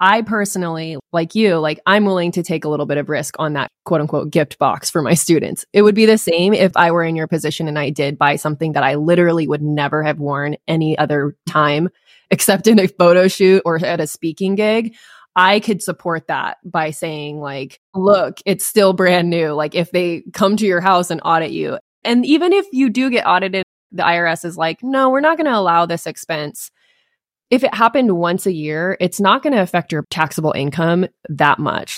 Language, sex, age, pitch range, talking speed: English, female, 20-39, 155-195 Hz, 220 wpm